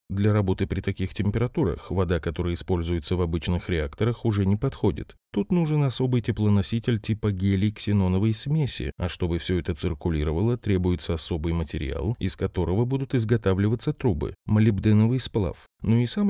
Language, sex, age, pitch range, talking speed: Russian, male, 20-39, 90-120 Hz, 145 wpm